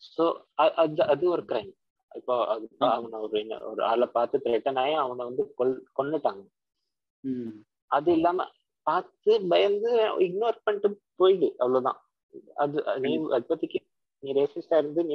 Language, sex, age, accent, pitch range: Tamil, male, 20-39, native, 140-175 Hz